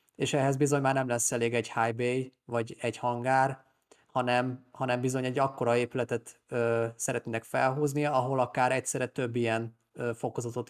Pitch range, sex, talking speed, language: 115-130 Hz, male, 150 wpm, Hungarian